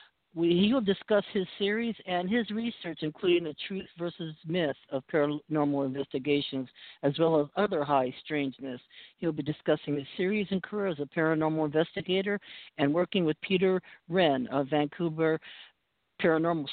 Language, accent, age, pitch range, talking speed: English, American, 60-79, 140-175 Hz, 150 wpm